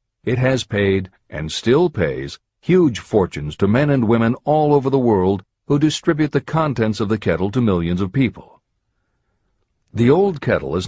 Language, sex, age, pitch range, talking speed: English, male, 60-79, 100-130 Hz, 170 wpm